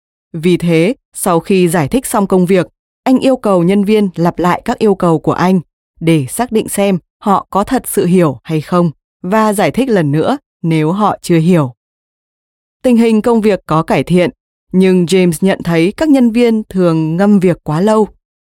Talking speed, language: 195 wpm, Vietnamese